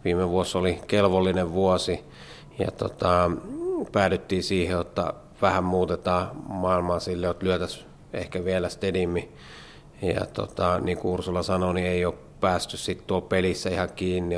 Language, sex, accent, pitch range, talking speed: Finnish, male, native, 90-95 Hz, 140 wpm